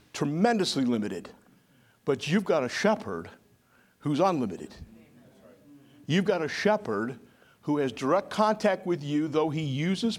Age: 60-79